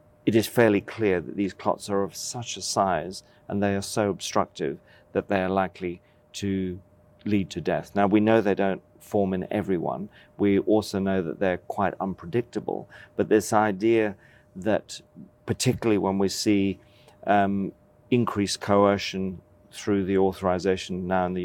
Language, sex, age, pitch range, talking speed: English, male, 40-59, 95-110 Hz, 160 wpm